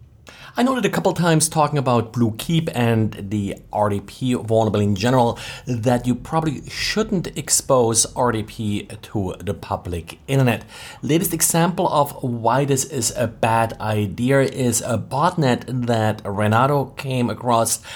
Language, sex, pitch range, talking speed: English, male, 115-140 Hz, 135 wpm